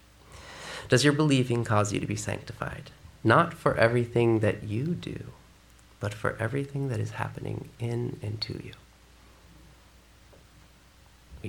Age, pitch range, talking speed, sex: 30-49, 105-135 Hz, 130 wpm, male